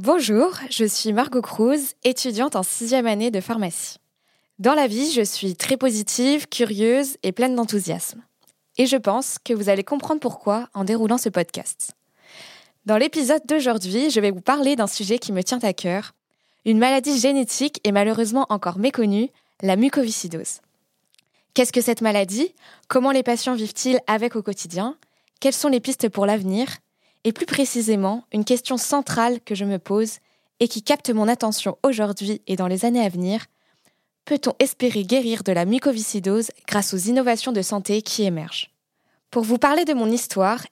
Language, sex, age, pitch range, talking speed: French, female, 20-39, 210-260 Hz, 170 wpm